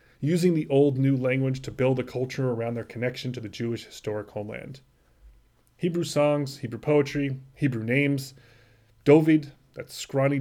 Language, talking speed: English, 150 wpm